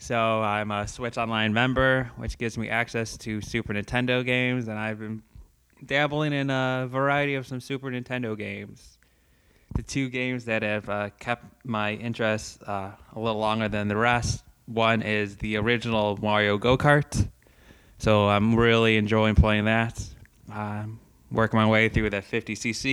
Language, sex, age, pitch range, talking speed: English, male, 20-39, 105-120 Hz, 165 wpm